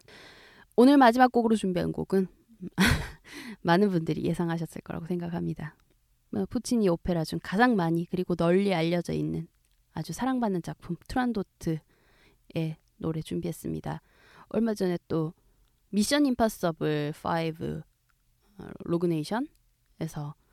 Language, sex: Korean, female